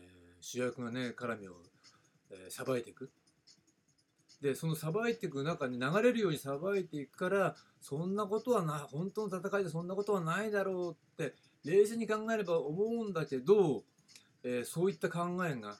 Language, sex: Japanese, male